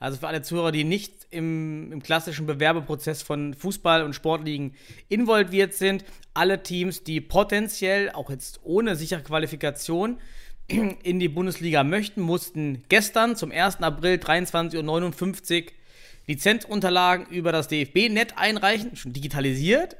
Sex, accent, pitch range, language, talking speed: male, German, 155-195 Hz, German, 130 wpm